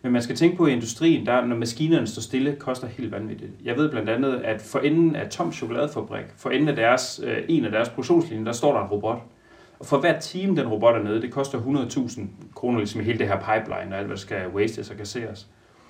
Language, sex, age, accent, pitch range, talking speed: Danish, male, 30-49, native, 110-145 Hz, 240 wpm